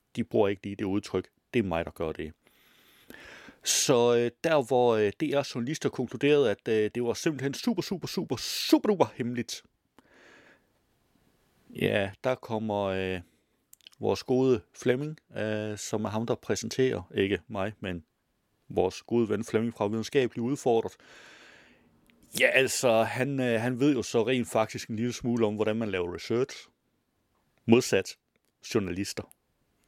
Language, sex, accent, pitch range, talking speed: Danish, male, native, 100-130 Hz, 145 wpm